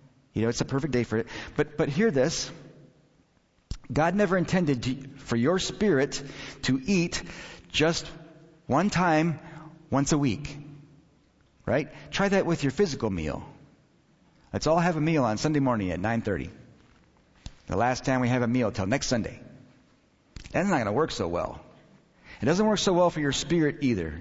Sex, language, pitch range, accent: male, English, 125-160 Hz, American